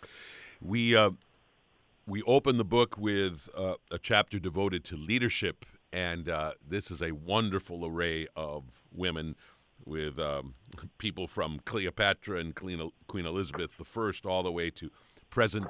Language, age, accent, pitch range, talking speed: English, 50-69, American, 80-100 Hz, 140 wpm